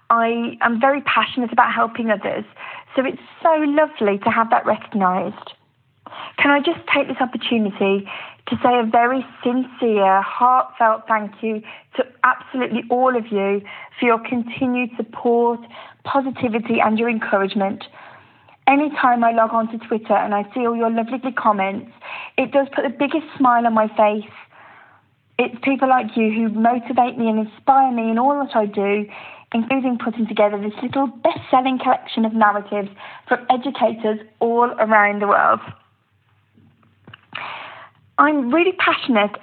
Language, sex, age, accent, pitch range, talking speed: English, female, 40-59, British, 220-265 Hz, 150 wpm